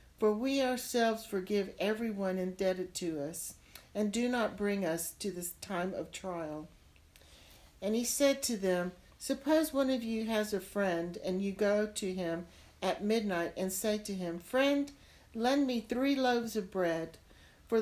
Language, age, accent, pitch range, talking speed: English, 60-79, American, 175-220 Hz, 165 wpm